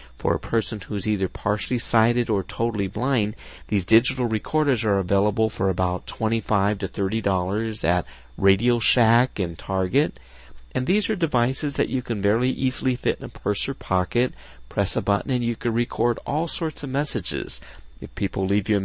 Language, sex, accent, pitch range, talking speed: English, male, American, 95-125 Hz, 180 wpm